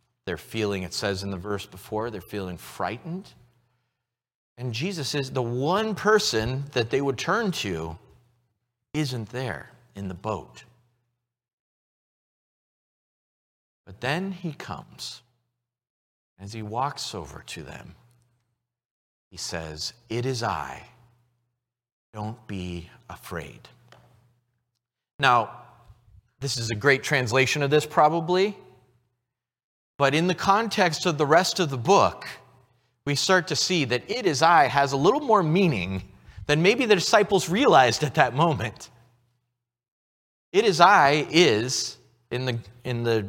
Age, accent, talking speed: 40-59, American, 130 wpm